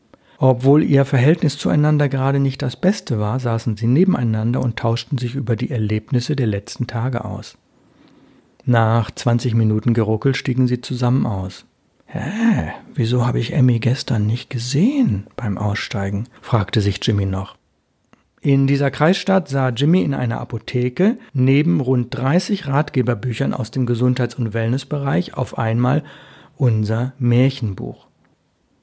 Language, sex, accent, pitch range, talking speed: German, male, German, 115-140 Hz, 135 wpm